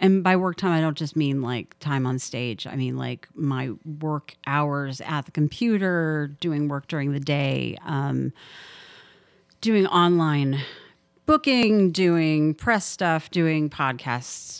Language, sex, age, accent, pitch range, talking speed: English, female, 40-59, American, 140-170 Hz, 145 wpm